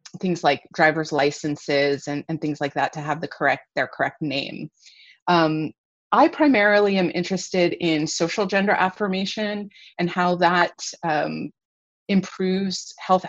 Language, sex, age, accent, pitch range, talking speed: English, female, 30-49, American, 150-185 Hz, 140 wpm